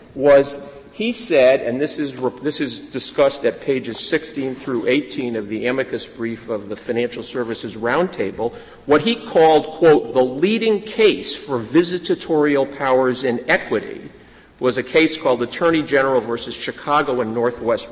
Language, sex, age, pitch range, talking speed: English, male, 50-69, 120-160 Hz, 150 wpm